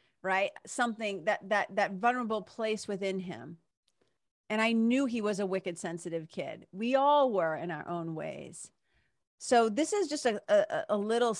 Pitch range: 170-215 Hz